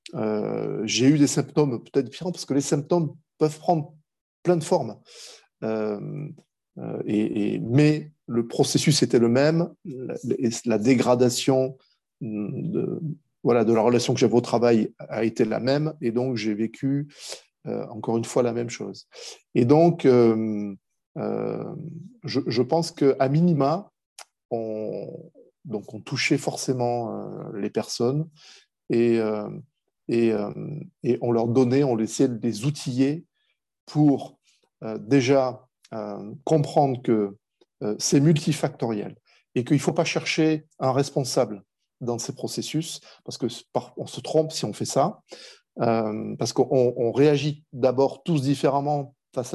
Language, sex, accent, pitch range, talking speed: French, male, French, 120-155 Hz, 145 wpm